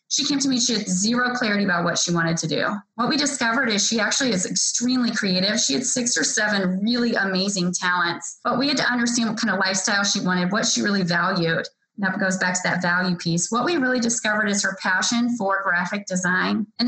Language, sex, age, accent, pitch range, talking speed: English, female, 20-39, American, 195-245 Hz, 230 wpm